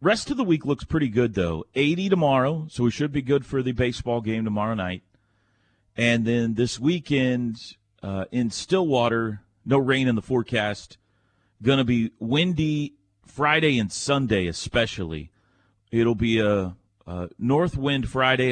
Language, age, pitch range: English, 40-59, 100-130 Hz